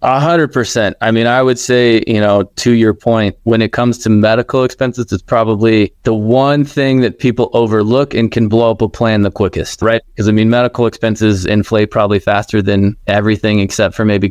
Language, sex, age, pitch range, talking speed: English, male, 20-39, 100-120 Hz, 205 wpm